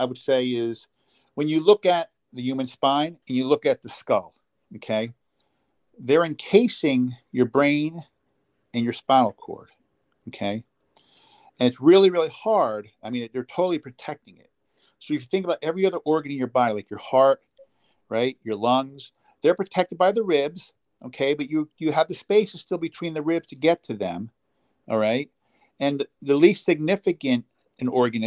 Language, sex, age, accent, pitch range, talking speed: English, male, 50-69, American, 115-165 Hz, 175 wpm